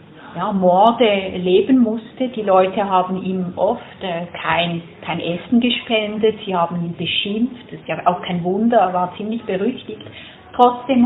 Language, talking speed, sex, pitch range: English, 150 wpm, female, 185-240 Hz